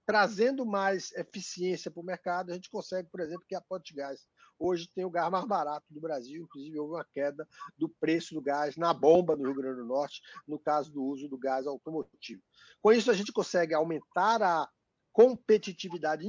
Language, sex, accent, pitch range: Portuguese, male, Brazilian, 150-205 Hz